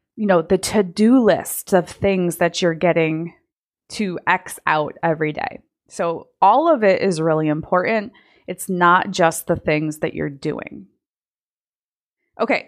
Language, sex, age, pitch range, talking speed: English, female, 20-39, 185-265 Hz, 145 wpm